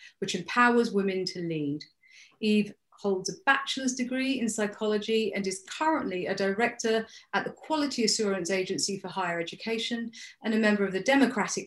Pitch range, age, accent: 195-245 Hz, 30-49, British